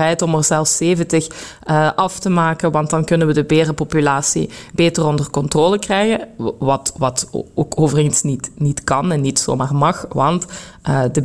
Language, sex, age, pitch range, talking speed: Dutch, female, 20-39, 150-175 Hz, 165 wpm